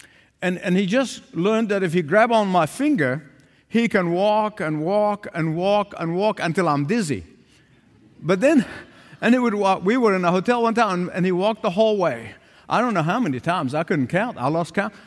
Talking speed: 225 wpm